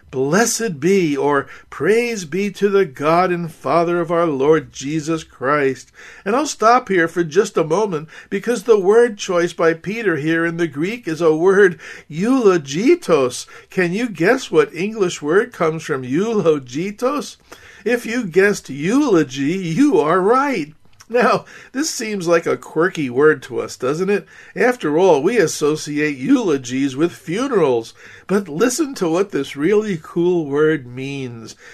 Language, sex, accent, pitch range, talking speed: English, male, American, 145-205 Hz, 150 wpm